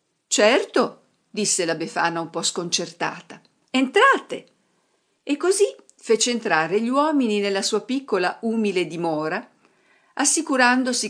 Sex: female